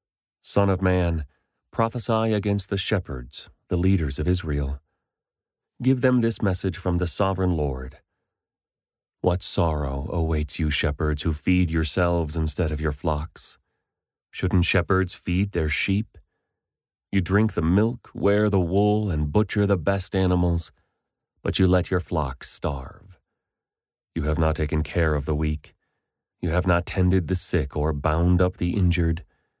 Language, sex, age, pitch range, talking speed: English, male, 30-49, 75-95 Hz, 150 wpm